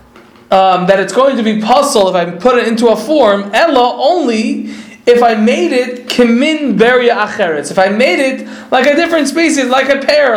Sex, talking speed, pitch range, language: male, 195 wpm, 200-265 Hz, Polish